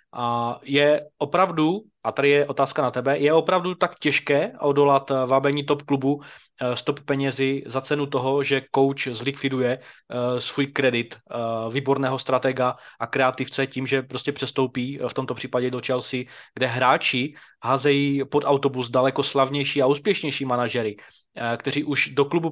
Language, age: Czech, 20-39